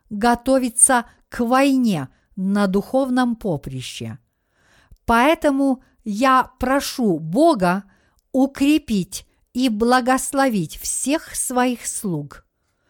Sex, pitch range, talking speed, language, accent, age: female, 185-270 Hz, 75 wpm, Russian, native, 50-69